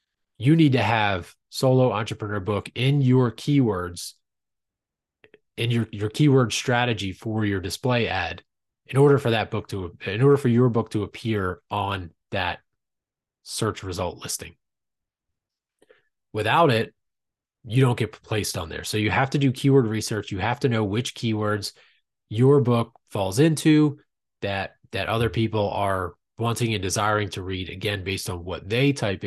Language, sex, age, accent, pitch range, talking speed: English, male, 20-39, American, 100-125 Hz, 160 wpm